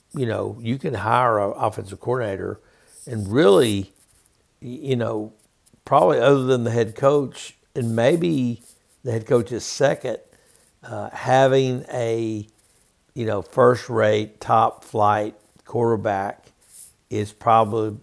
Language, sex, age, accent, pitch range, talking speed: English, male, 60-79, American, 105-125 Hz, 115 wpm